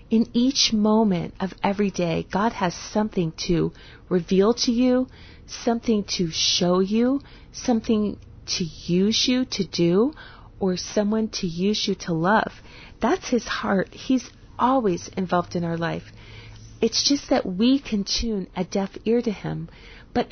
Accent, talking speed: American, 150 wpm